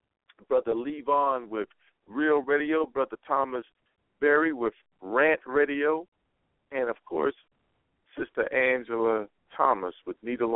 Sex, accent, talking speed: male, American, 110 wpm